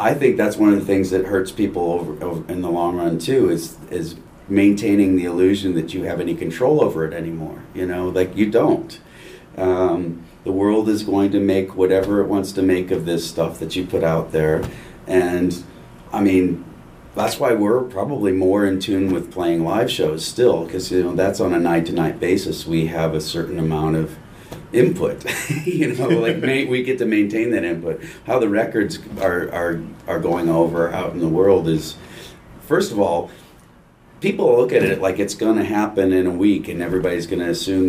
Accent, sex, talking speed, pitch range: American, male, 205 wpm, 85-100 Hz